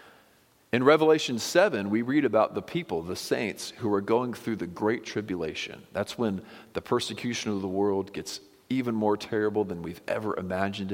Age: 40-59